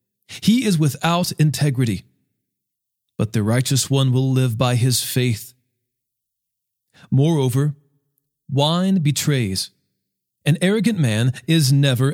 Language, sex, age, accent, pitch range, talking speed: English, male, 40-59, American, 125-155 Hz, 105 wpm